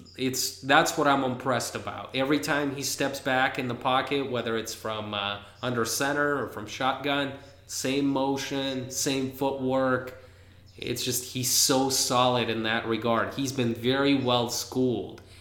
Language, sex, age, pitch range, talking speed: English, male, 20-39, 110-135 Hz, 155 wpm